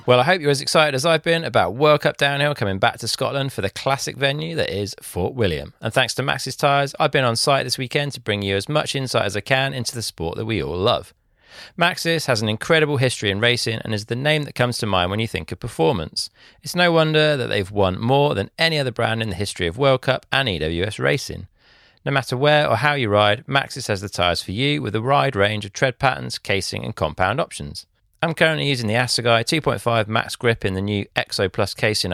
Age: 40-59